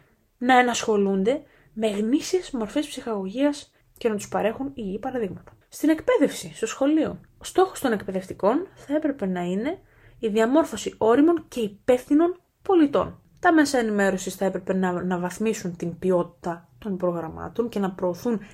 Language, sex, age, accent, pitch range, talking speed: Greek, female, 20-39, native, 180-245 Hz, 140 wpm